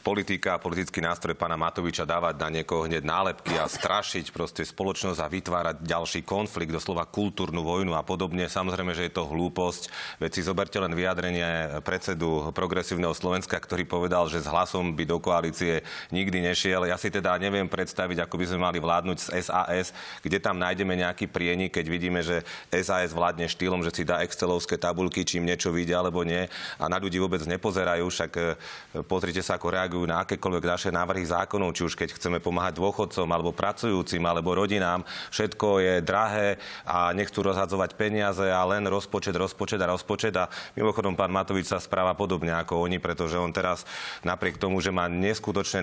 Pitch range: 85-95 Hz